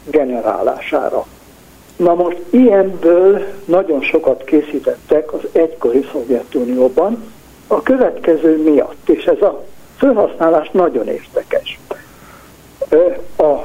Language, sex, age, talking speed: Hungarian, male, 60-79, 90 wpm